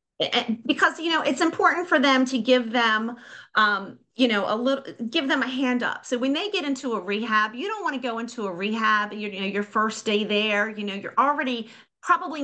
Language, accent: English, American